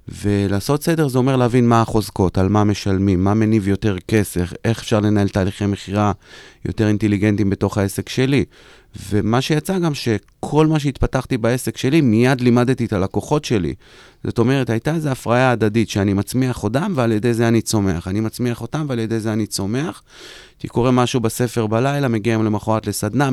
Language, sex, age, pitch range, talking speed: Hebrew, male, 30-49, 105-135 Hz, 170 wpm